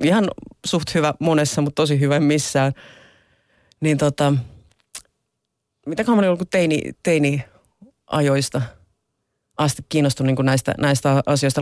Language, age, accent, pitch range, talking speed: Finnish, 30-49, native, 135-150 Hz, 115 wpm